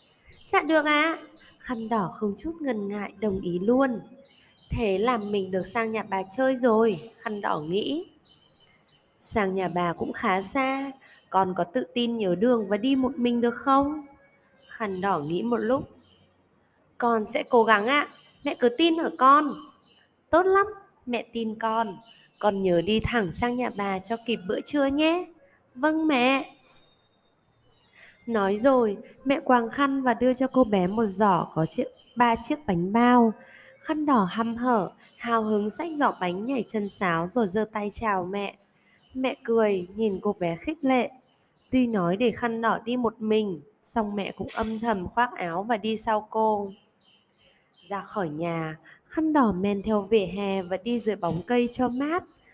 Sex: female